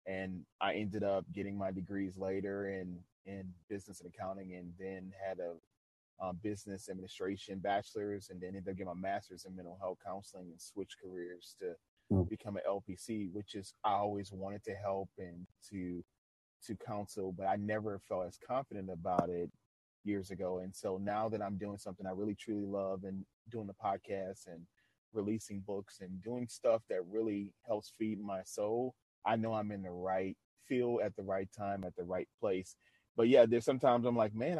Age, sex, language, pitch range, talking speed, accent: 30-49, male, English, 95-110 Hz, 190 wpm, American